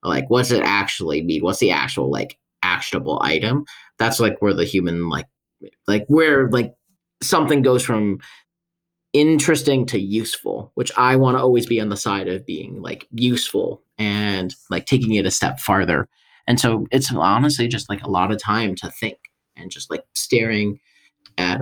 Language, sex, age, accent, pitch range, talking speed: English, male, 30-49, American, 100-125 Hz, 175 wpm